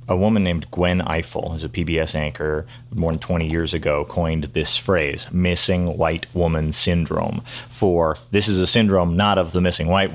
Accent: American